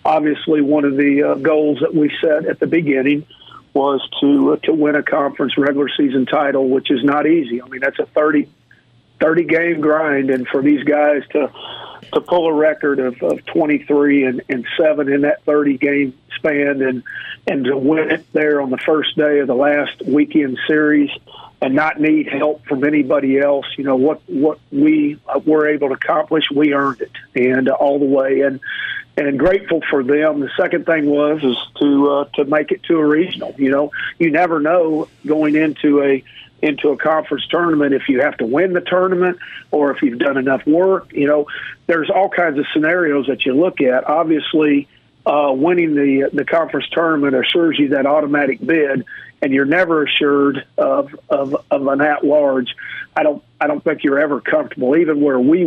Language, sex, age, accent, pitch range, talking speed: English, male, 50-69, American, 140-155 Hz, 195 wpm